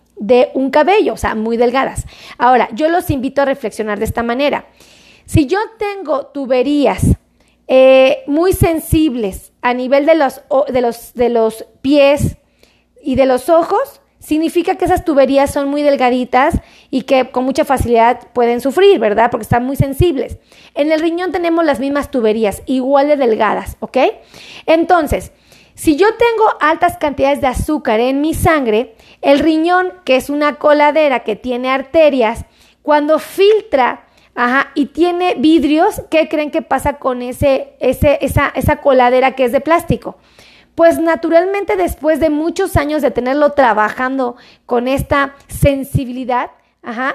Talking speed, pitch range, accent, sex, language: 145 wpm, 255-315 Hz, Mexican, female, Spanish